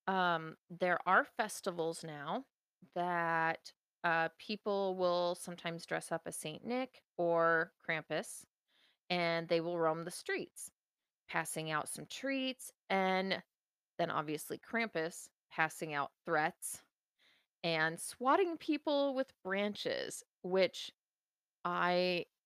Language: English